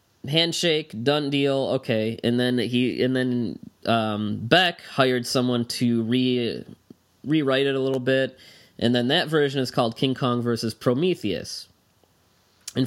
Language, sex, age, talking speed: English, male, 20-39, 145 wpm